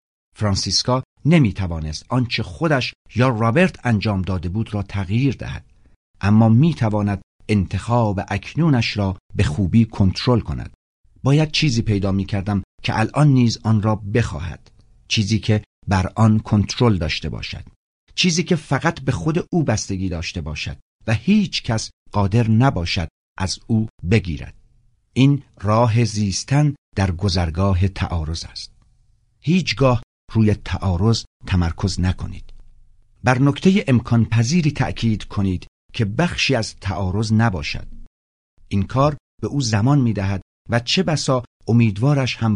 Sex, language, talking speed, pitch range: male, Persian, 125 wpm, 95-125 Hz